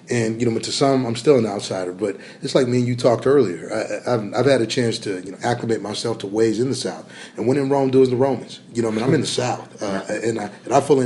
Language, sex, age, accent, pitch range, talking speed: English, male, 30-49, American, 110-130 Hz, 305 wpm